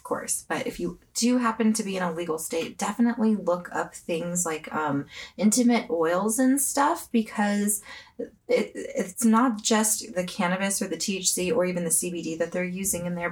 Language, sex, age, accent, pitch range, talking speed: English, female, 20-39, American, 155-210 Hz, 180 wpm